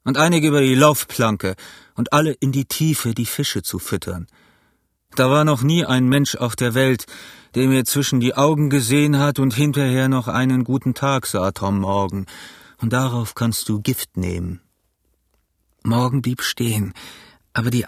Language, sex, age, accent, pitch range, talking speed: German, male, 40-59, German, 105-150 Hz, 170 wpm